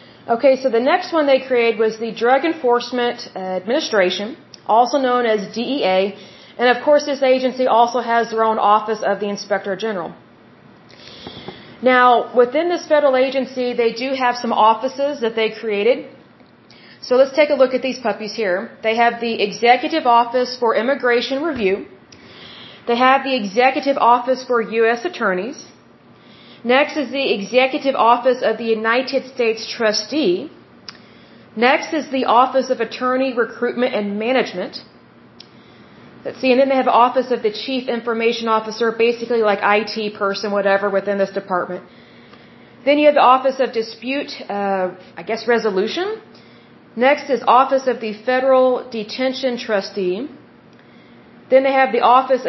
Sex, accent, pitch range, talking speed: female, American, 220-260 Hz, 150 wpm